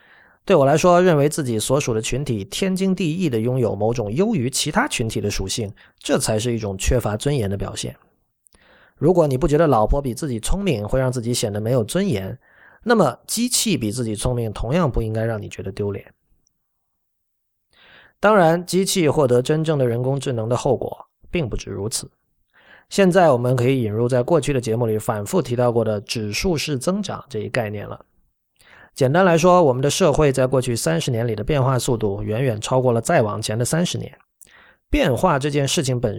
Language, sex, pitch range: Chinese, male, 110-155 Hz